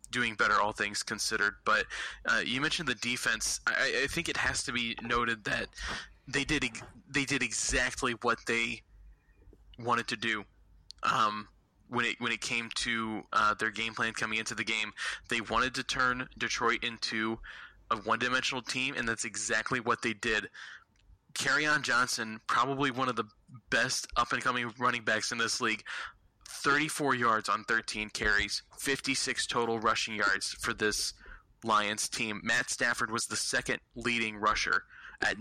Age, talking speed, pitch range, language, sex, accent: 20-39, 160 wpm, 110-125 Hz, English, male, American